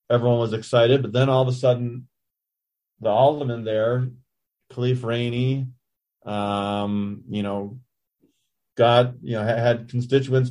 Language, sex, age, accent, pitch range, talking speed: English, male, 30-49, American, 105-130 Hz, 125 wpm